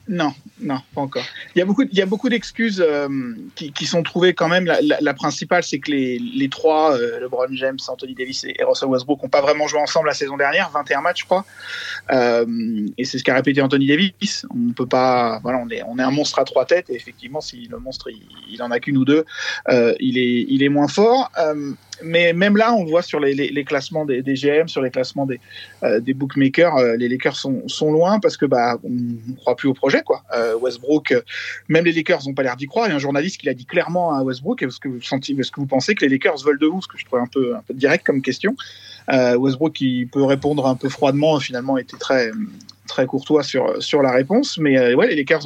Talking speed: 255 wpm